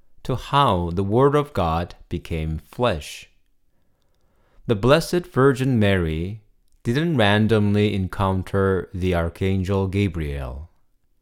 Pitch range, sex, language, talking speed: 80-115 Hz, male, English, 95 wpm